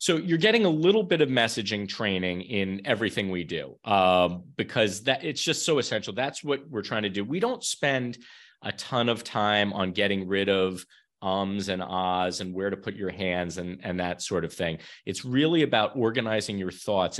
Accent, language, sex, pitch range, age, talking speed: American, English, male, 95-115 Hz, 30-49, 205 wpm